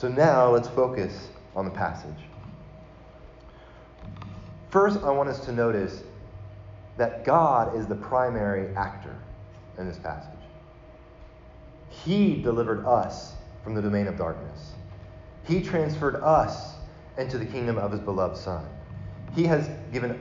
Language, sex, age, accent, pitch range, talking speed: English, male, 30-49, American, 95-125 Hz, 130 wpm